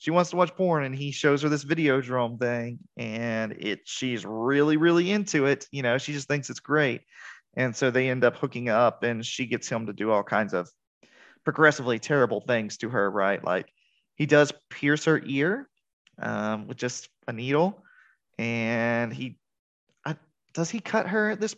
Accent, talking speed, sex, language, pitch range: American, 190 wpm, male, English, 120-155 Hz